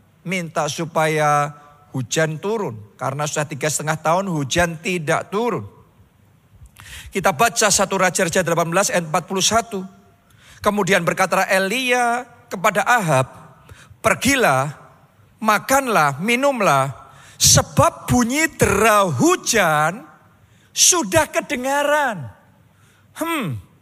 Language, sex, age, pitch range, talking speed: Indonesian, male, 40-59, 160-250 Hz, 85 wpm